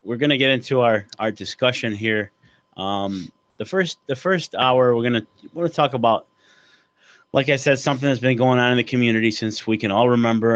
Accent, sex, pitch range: American, male, 110-130 Hz